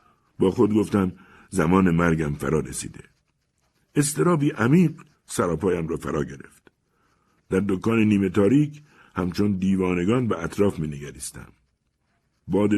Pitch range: 85-115 Hz